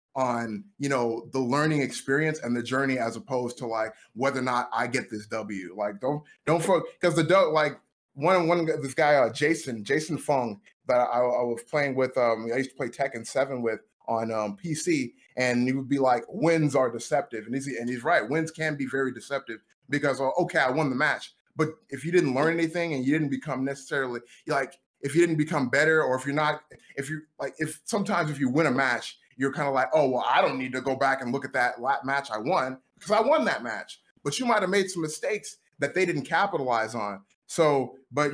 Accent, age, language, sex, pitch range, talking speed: American, 20-39, English, male, 125-165 Hz, 230 wpm